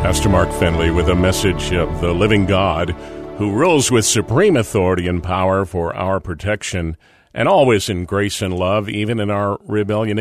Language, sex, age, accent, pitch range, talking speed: English, male, 50-69, American, 95-120 Hz, 175 wpm